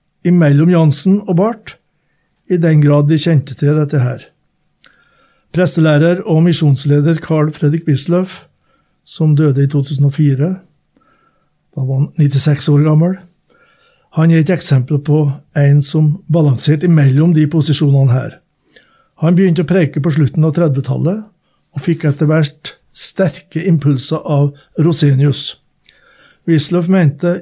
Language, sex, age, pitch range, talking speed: English, male, 60-79, 150-180 Hz, 130 wpm